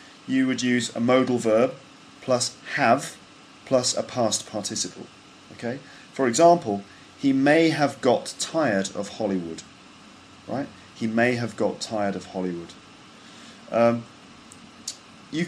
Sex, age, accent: male, 30-49, British